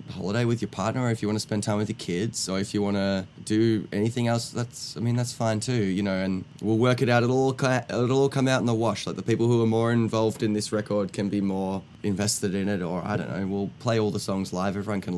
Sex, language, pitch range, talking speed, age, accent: male, English, 100-120 Hz, 275 wpm, 20-39, Australian